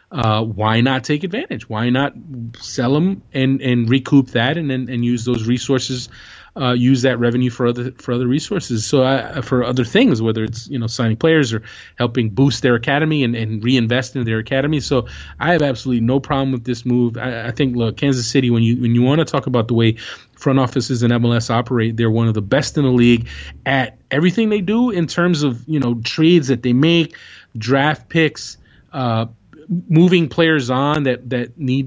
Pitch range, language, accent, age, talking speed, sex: 120-145 Hz, English, American, 30-49, 210 wpm, male